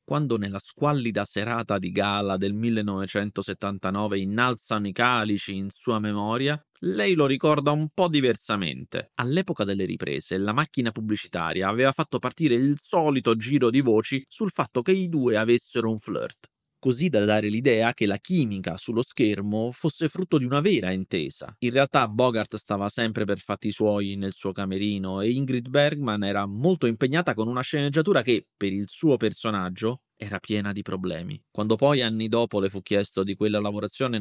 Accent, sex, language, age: native, male, Italian, 30-49